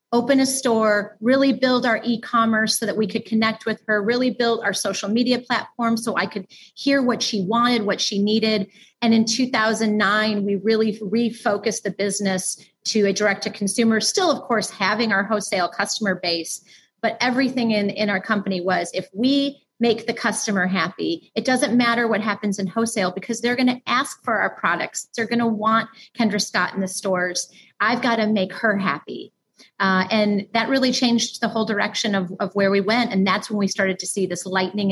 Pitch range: 200-240 Hz